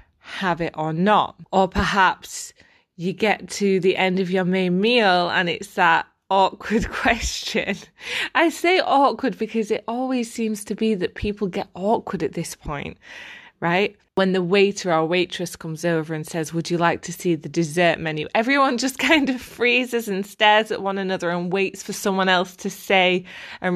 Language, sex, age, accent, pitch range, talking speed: English, female, 20-39, British, 175-220 Hz, 180 wpm